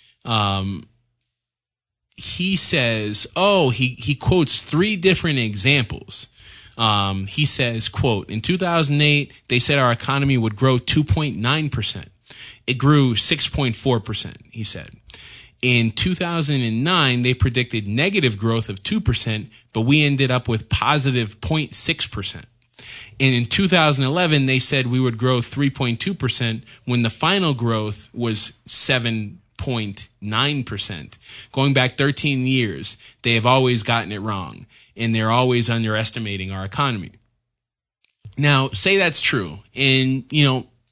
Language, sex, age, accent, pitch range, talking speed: English, male, 20-39, American, 110-140 Hz, 120 wpm